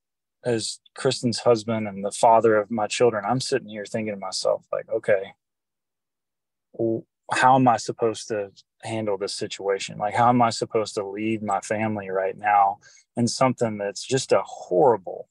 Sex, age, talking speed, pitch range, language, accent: male, 20-39, 165 wpm, 110-130 Hz, English, American